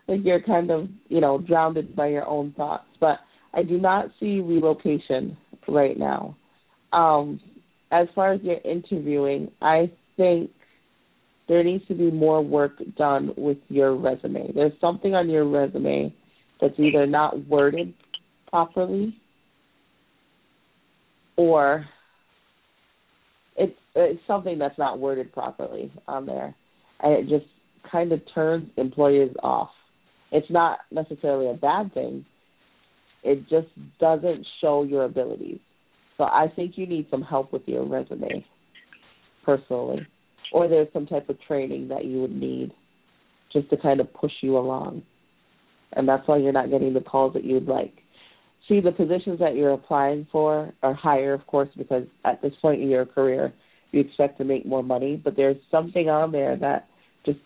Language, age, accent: English, 40-59, American